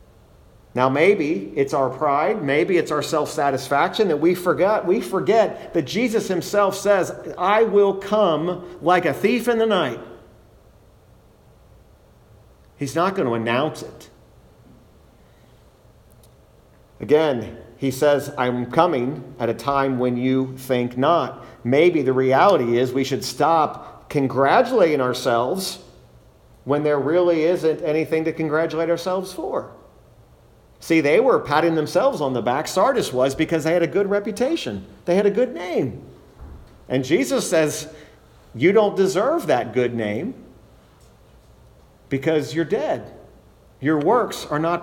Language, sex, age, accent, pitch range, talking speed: English, male, 50-69, American, 130-175 Hz, 135 wpm